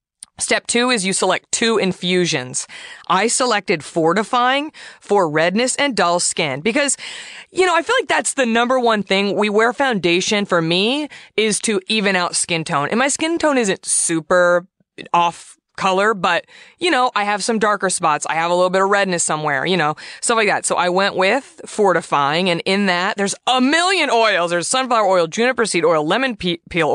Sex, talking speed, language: female, 190 wpm, English